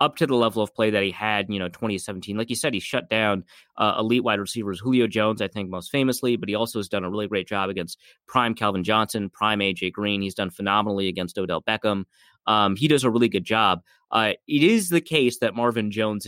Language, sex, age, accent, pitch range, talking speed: English, male, 30-49, American, 100-125 Hz, 240 wpm